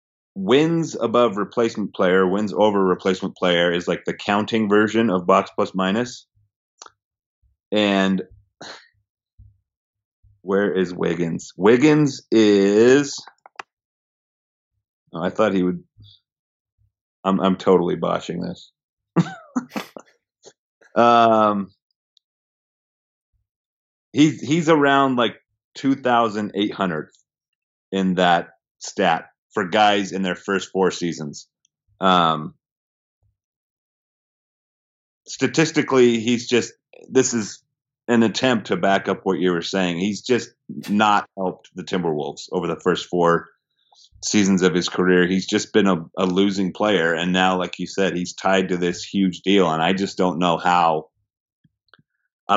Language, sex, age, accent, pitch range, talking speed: English, male, 30-49, American, 90-110 Hz, 120 wpm